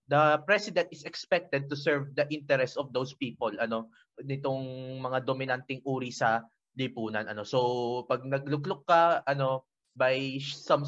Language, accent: Filipino, native